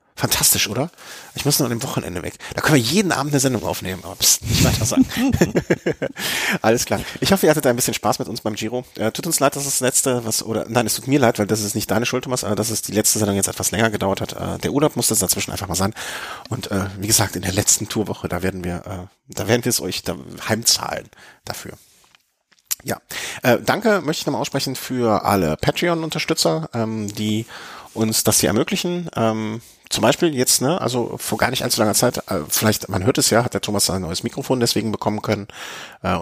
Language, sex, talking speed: German, male, 230 wpm